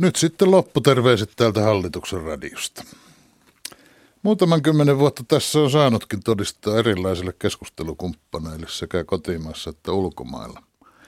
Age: 60-79